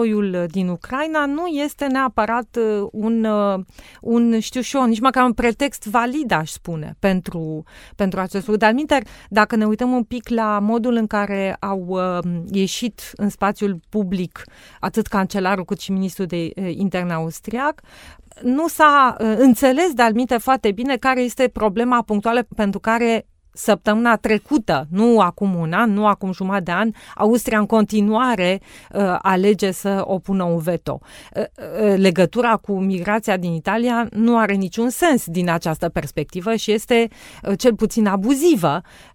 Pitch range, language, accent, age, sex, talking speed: 190-235 Hz, Romanian, native, 30-49, female, 150 wpm